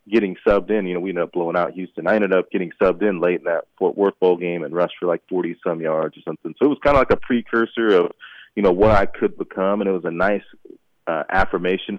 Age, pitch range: 30-49, 90-115 Hz